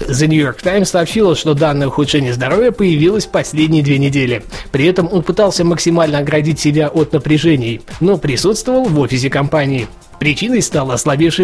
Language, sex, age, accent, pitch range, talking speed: Russian, male, 20-39, native, 135-180 Hz, 155 wpm